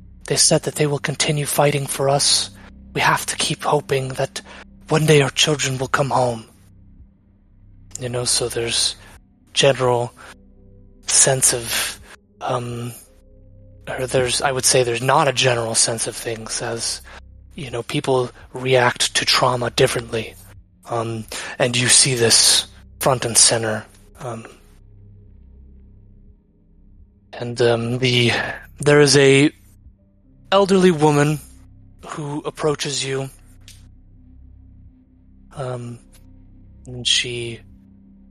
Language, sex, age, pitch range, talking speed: English, male, 20-39, 95-135 Hz, 115 wpm